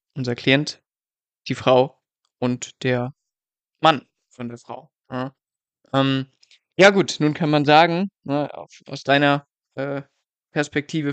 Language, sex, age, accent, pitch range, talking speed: German, male, 20-39, German, 135-160 Hz, 125 wpm